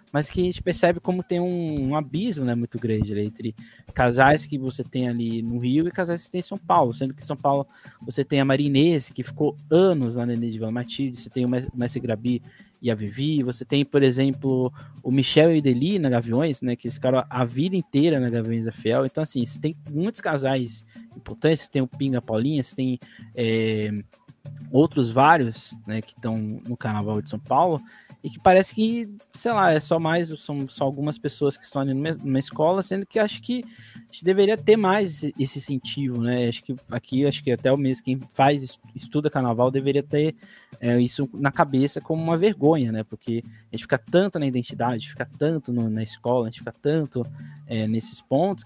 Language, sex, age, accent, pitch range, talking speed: Portuguese, male, 20-39, Brazilian, 120-155 Hz, 215 wpm